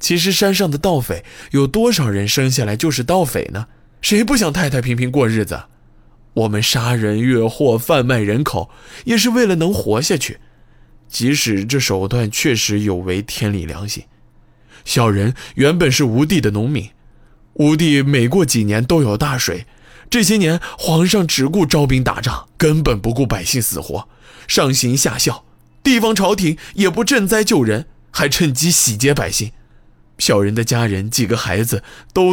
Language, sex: Chinese, male